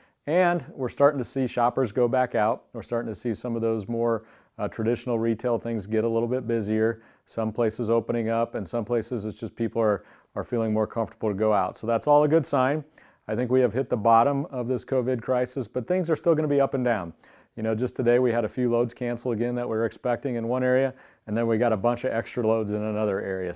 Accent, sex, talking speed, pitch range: American, male, 255 wpm, 110-125 Hz